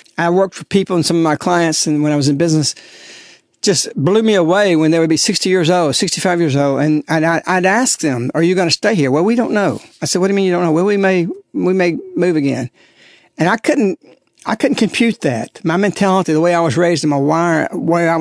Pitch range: 150-185 Hz